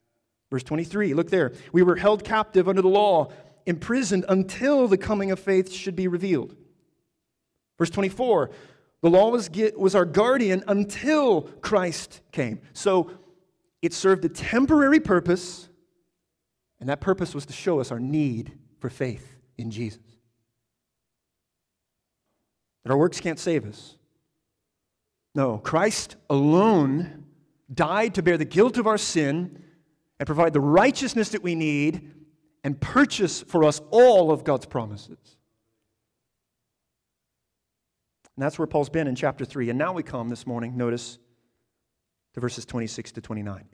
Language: English